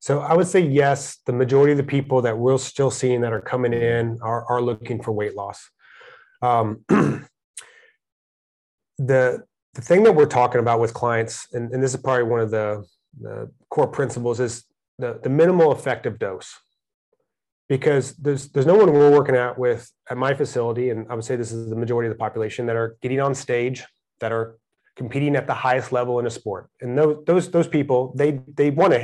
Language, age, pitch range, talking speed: English, 30-49, 120-145 Hz, 200 wpm